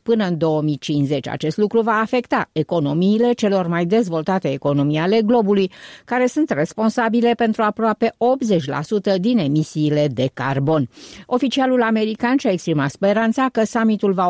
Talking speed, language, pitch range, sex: 135 wpm, Romanian, 160-230 Hz, female